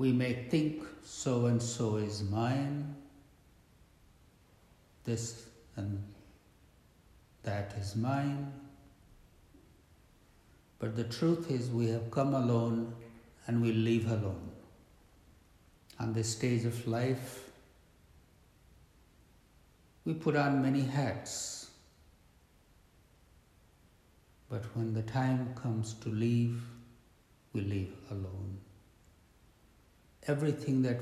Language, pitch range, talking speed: English, 95-120 Hz, 90 wpm